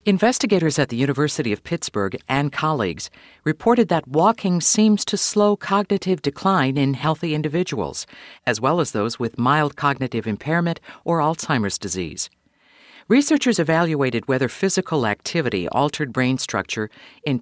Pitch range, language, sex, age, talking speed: 125-170 Hz, English, female, 50-69, 135 wpm